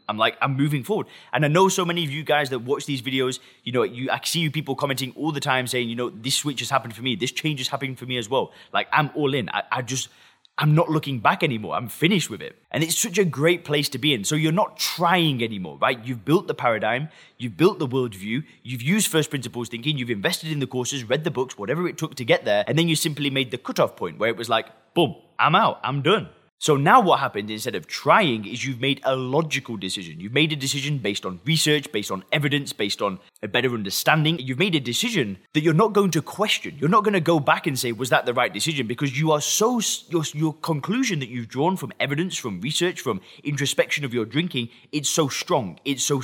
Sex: male